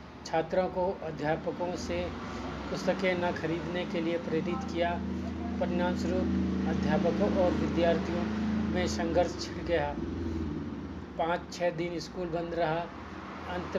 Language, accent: Hindi, native